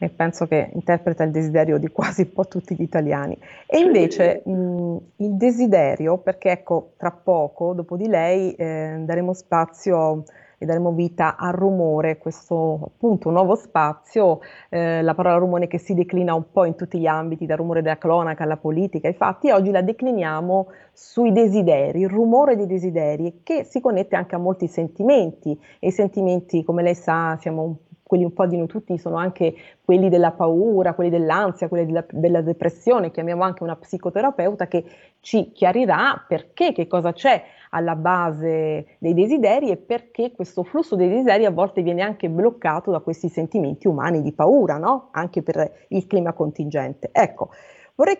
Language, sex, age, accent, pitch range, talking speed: Italian, female, 30-49, native, 165-200 Hz, 175 wpm